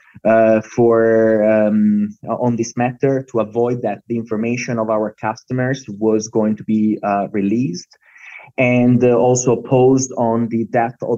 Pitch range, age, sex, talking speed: 110-130 Hz, 20-39, male, 145 wpm